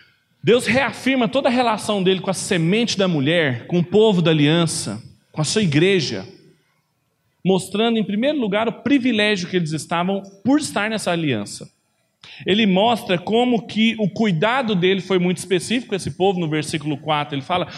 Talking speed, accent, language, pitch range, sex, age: 170 wpm, Brazilian, Portuguese, 175-230 Hz, male, 40-59